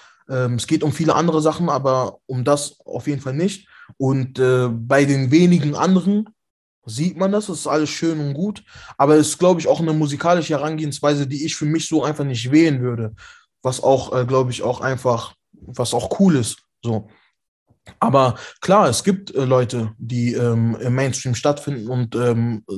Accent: German